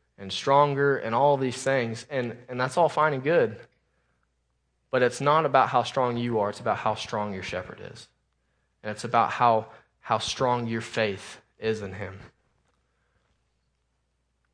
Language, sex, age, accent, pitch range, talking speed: English, male, 20-39, American, 80-125 Hz, 160 wpm